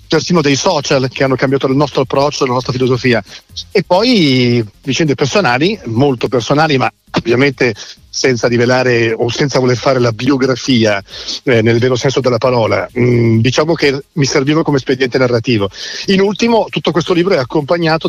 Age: 40-59